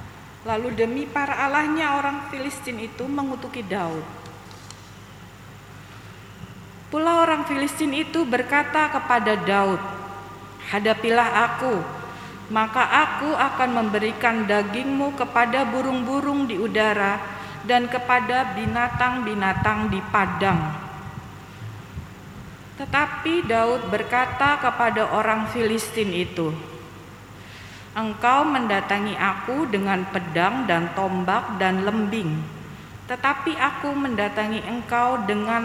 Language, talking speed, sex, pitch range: Indonesian, 90 wpm, female, 190-250 Hz